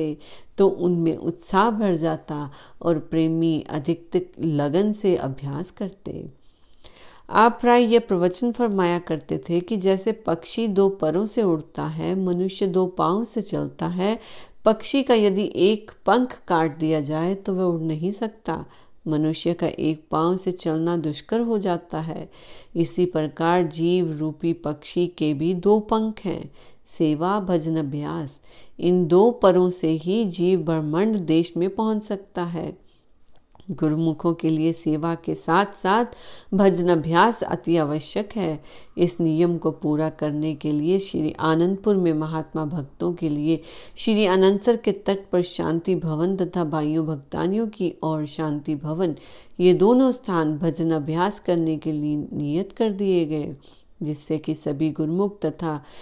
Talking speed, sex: 145 wpm, female